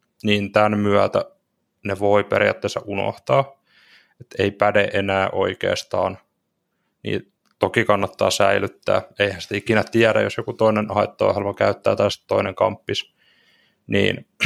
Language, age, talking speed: Finnish, 20-39, 120 wpm